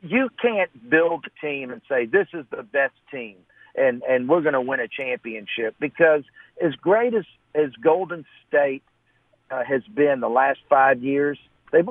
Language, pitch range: English, 140-175 Hz